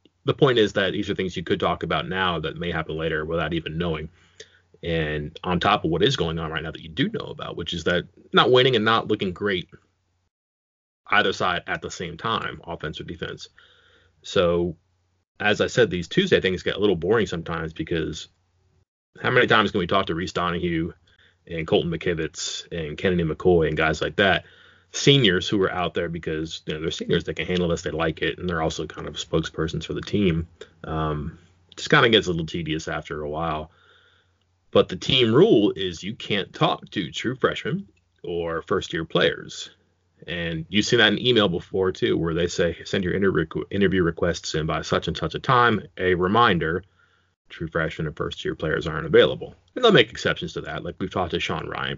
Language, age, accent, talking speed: English, 30-49, American, 205 wpm